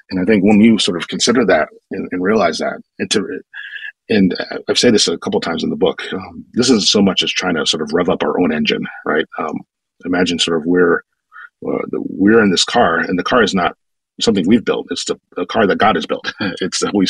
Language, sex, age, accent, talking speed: English, male, 40-59, American, 255 wpm